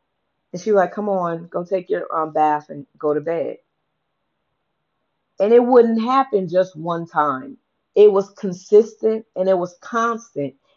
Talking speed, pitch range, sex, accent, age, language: 160 wpm, 165-220 Hz, female, American, 40-59, English